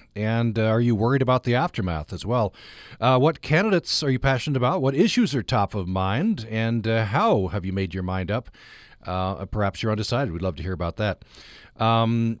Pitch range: 105-130 Hz